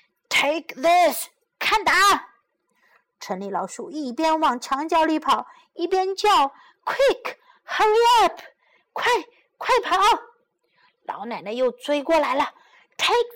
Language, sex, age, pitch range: Chinese, female, 50-69, 260-420 Hz